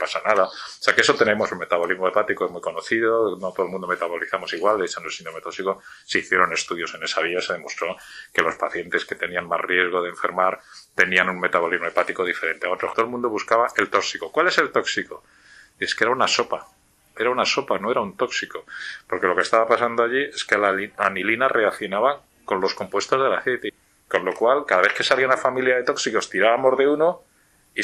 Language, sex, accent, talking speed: Spanish, male, Spanish, 215 wpm